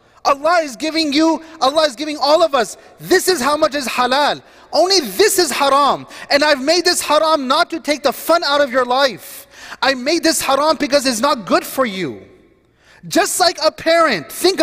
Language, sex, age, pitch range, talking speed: English, male, 30-49, 265-315 Hz, 200 wpm